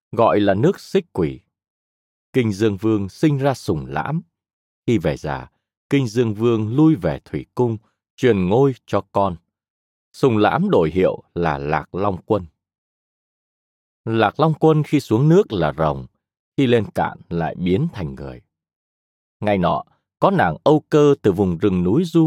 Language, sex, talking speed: Vietnamese, male, 160 wpm